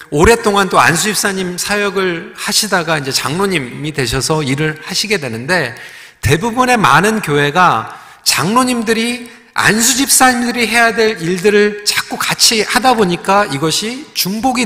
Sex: male